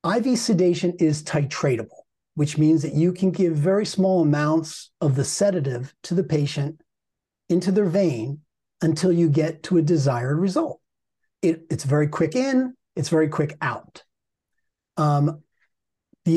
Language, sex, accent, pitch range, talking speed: English, male, American, 150-185 Hz, 145 wpm